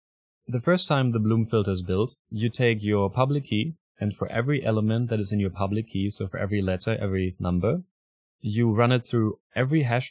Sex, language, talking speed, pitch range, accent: male, English, 210 wpm, 95-120 Hz, German